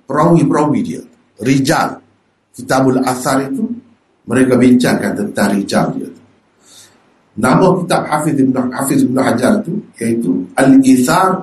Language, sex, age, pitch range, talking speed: Malay, male, 50-69, 125-170 Hz, 115 wpm